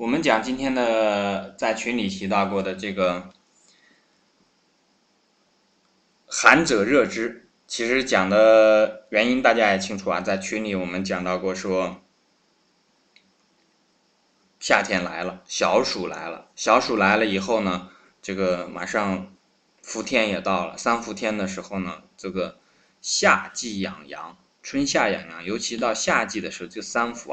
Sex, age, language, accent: male, 20-39, Chinese, native